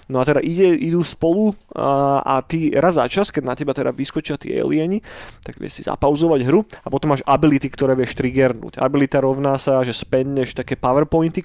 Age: 30-49